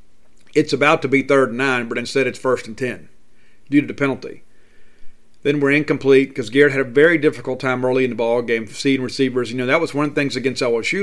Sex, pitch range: male, 120-140 Hz